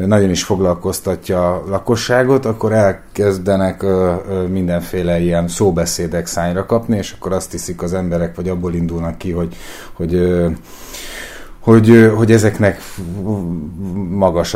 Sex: male